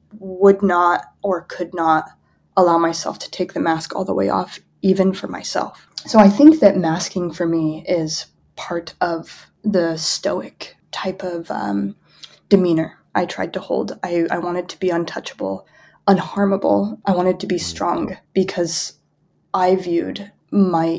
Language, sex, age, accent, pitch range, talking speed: English, female, 20-39, American, 165-200 Hz, 155 wpm